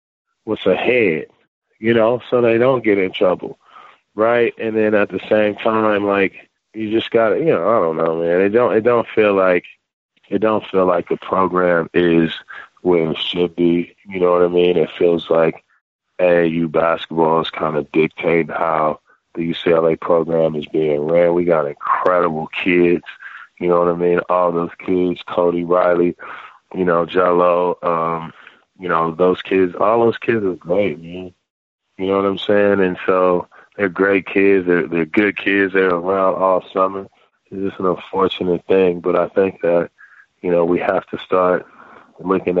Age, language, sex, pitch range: 20-39, English, male, 85-100 Hz